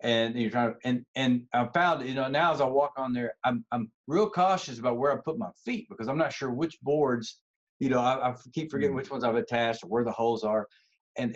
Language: English